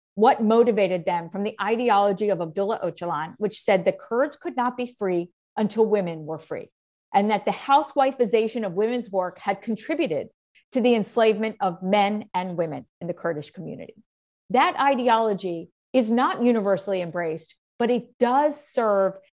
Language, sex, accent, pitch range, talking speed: English, female, American, 185-245 Hz, 160 wpm